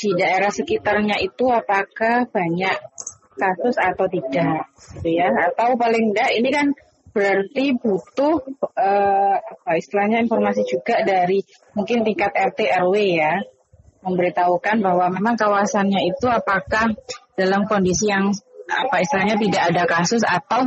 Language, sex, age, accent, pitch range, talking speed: Indonesian, female, 20-39, native, 180-230 Hz, 125 wpm